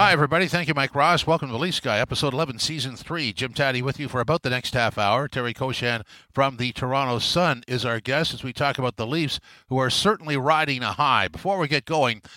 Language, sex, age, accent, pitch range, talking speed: English, male, 50-69, American, 130-155 Hz, 240 wpm